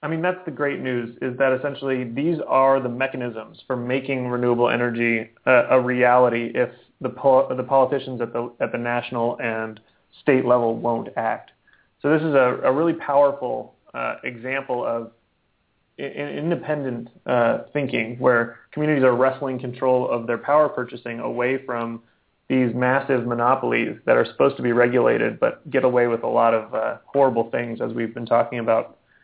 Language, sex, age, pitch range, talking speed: English, male, 30-49, 120-135 Hz, 170 wpm